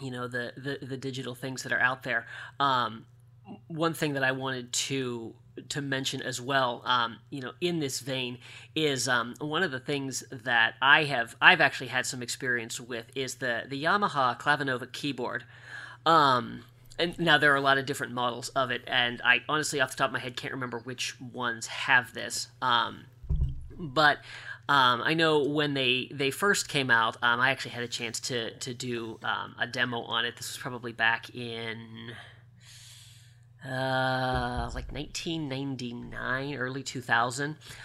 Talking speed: 175 wpm